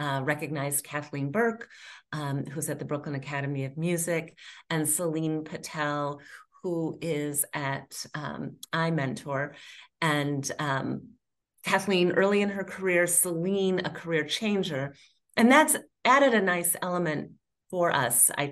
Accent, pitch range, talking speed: American, 145-190 Hz, 130 wpm